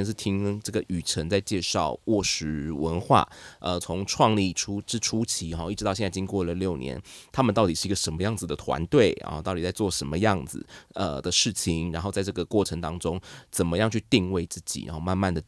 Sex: male